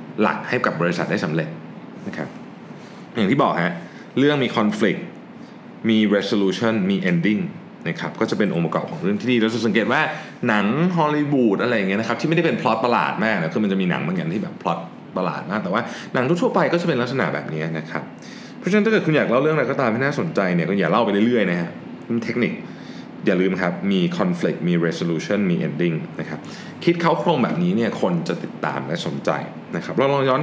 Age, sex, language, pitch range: 20-39, male, Thai, 105-175 Hz